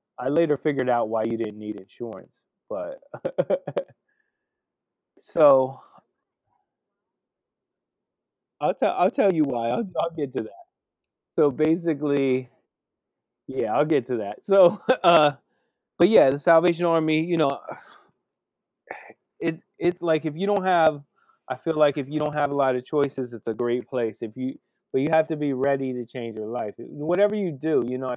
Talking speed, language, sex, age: 165 wpm, English, male, 30-49